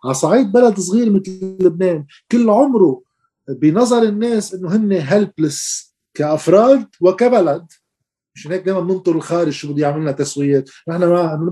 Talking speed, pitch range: 125 wpm, 150-200 Hz